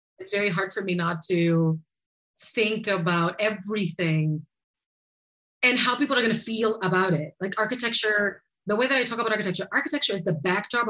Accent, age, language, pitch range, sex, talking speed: American, 30-49, English, 165-245 Hz, female, 170 wpm